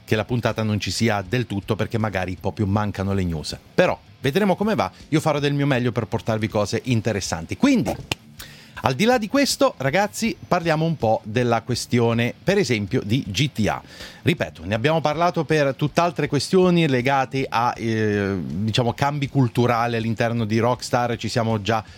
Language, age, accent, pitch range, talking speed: Italian, 30-49, native, 105-140 Hz, 170 wpm